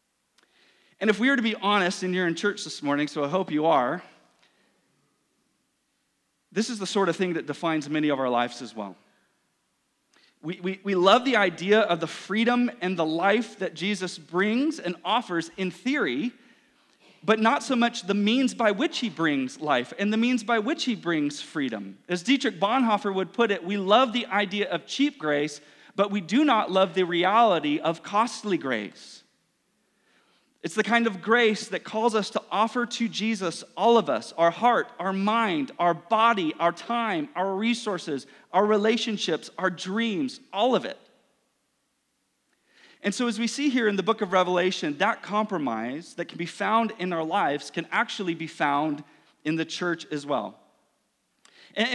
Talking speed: 180 wpm